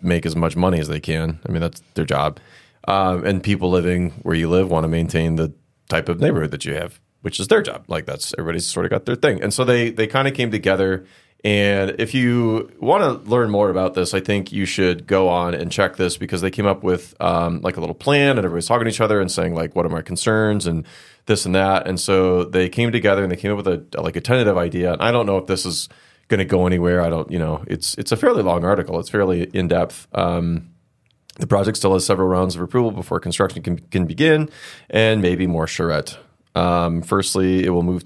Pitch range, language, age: 85-105 Hz, English, 30-49